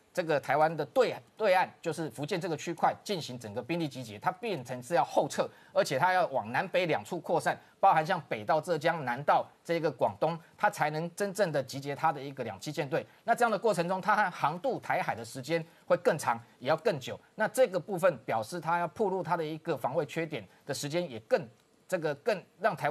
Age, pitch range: 30-49, 145-185 Hz